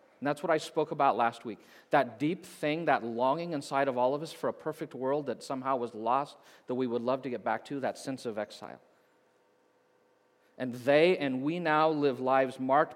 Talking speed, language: 215 wpm, English